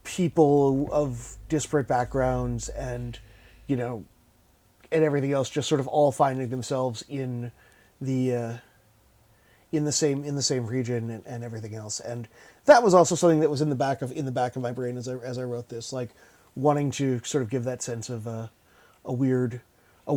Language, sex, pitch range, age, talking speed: English, male, 120-145 Hz, 30-49, 195 wpm